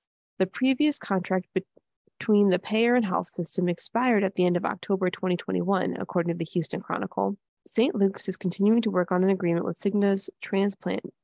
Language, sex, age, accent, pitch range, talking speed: English, female, 20-39, American, 175-210 Hz, 175 wpm